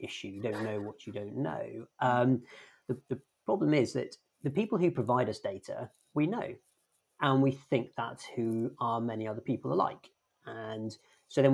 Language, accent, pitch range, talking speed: English, British, 110-135 Hz, 180 wpm